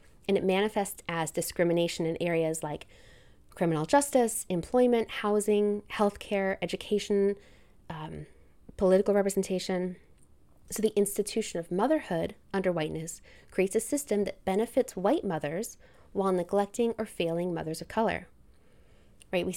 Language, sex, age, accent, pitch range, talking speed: English, female, 20-39, American, 175-215 Hz, 125 wpm